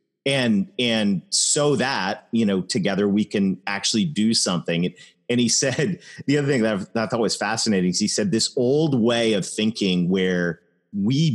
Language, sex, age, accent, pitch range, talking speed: English, male, 30-49, American, 90-130 Hz, 175 wpm